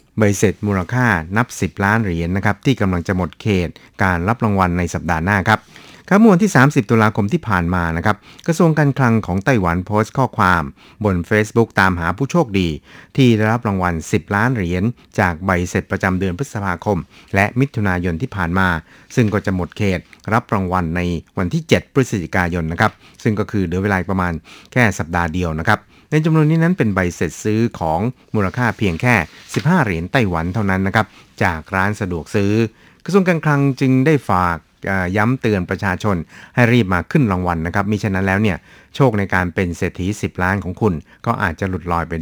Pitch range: 90-115 Hz